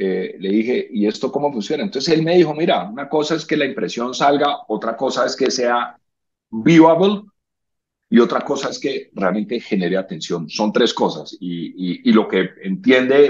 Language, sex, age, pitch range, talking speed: Spanish, male, 40-59, 115-160 Hz, 190 wpm